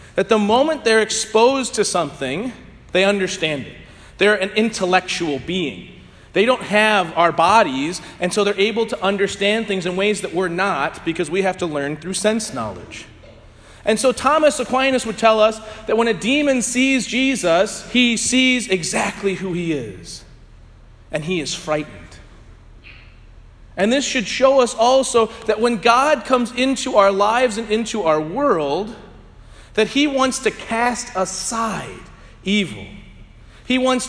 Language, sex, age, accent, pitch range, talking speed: English, male, 40-59, American, 180-245 Hz, 155 wpm